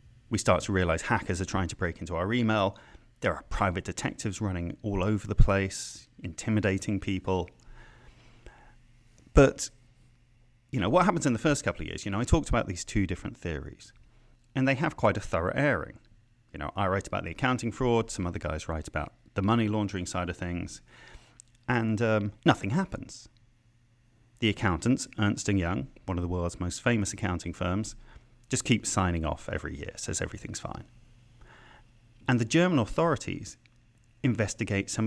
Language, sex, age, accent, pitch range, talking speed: English, male, 30-49, British, 95-120 Hz, 170 wpm